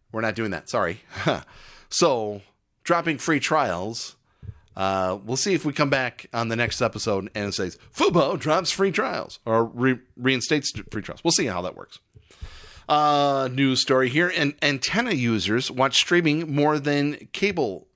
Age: 30-49